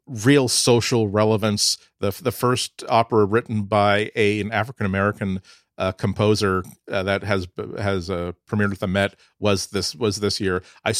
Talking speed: 170 wpm